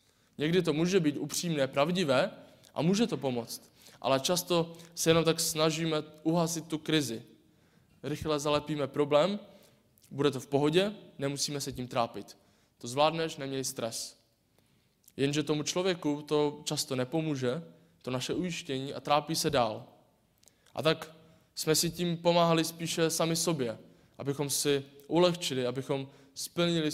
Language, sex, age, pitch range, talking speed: Czech, male, 20-39, 135-160 Hz, 135 wpm